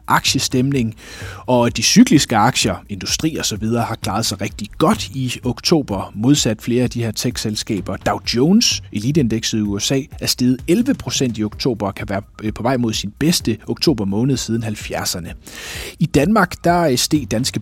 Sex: male